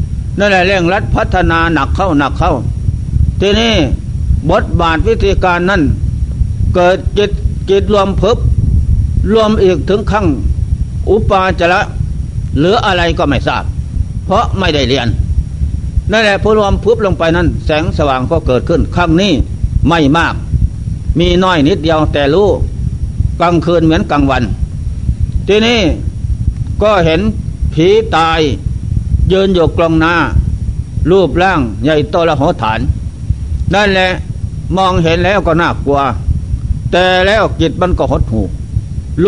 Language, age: Thai, 60-79